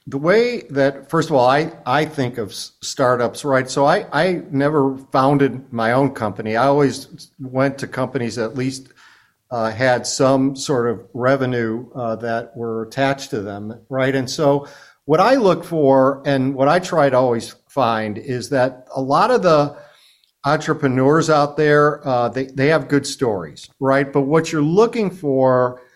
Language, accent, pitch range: English, American, 125-150 Hz